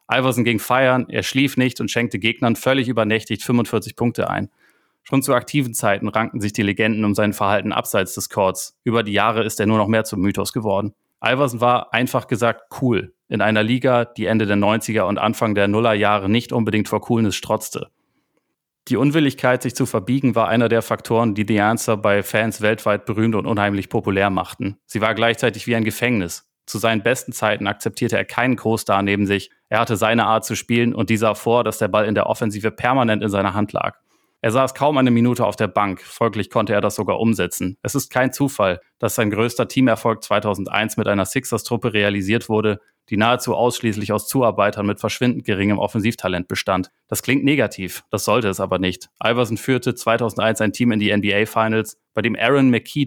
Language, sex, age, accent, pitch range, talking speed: German, male, 30-49, German, 105-120 Hz, 200 wpm